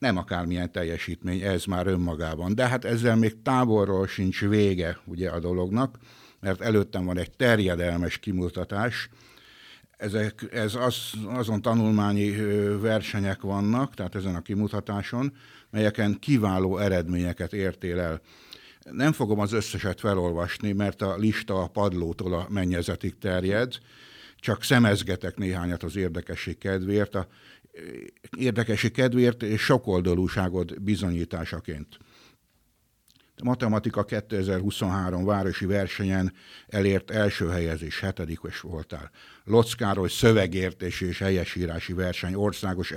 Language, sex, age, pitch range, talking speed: Hungarian, male, 60-79, 90-105 Hz, 105 wpm